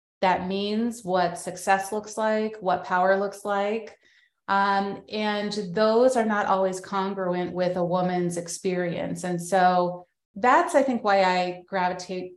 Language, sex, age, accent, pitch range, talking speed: English, female, 30-49, American, 175-195 Hz, 140 wpm